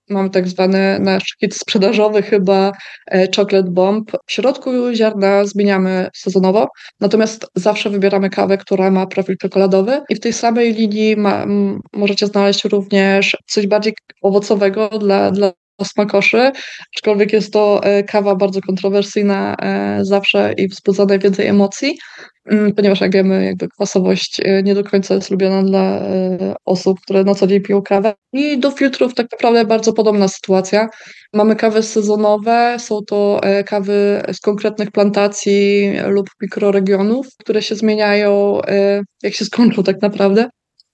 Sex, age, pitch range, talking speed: female, 20-39, 195-215 Hz, 135 wpm